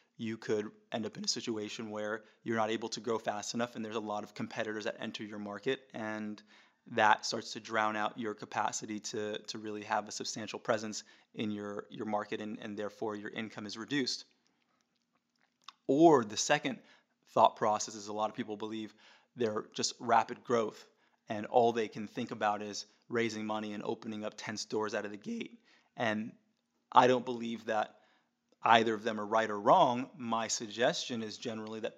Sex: male